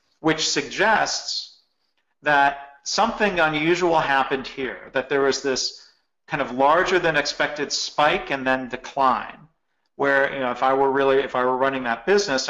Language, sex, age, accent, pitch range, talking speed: English, male, 40-59, American, 125-150 Hz, 160 wpm